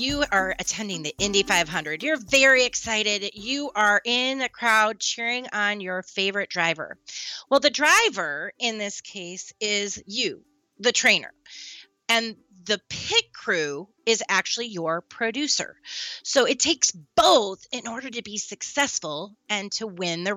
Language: English